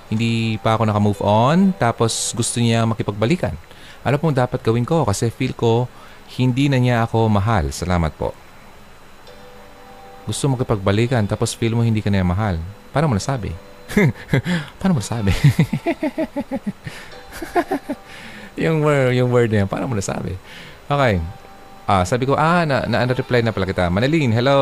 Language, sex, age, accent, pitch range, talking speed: Filipino, male, 20-39, native, 95-125 Hz, 145 wpm